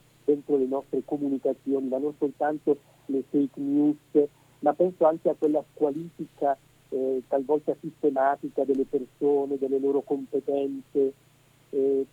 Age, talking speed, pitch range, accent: 50-69, 125 wpm, 140-155 Hz, native